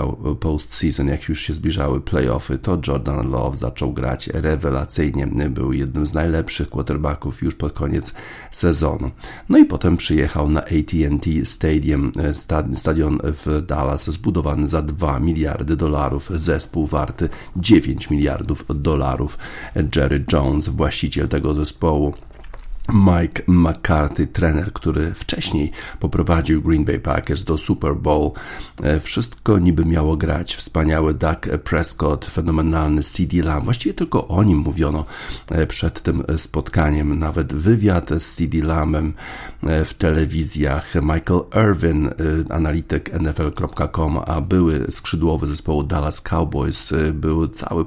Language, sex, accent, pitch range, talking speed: Polish, male, native, 75-85 Hz, 120 wpm